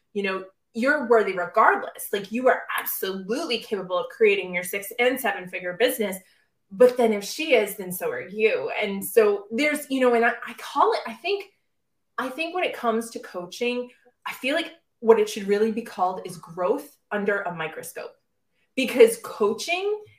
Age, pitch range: 20-39, 195-255 Hz